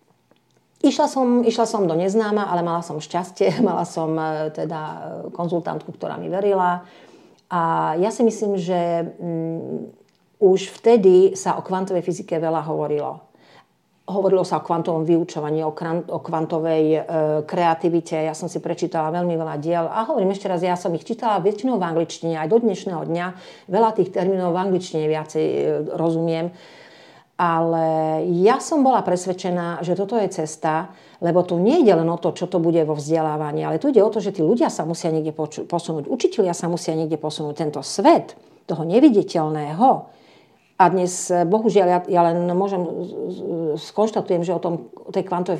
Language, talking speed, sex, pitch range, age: Slovak, 160 wpm, female, 165-195 Hz, 50-69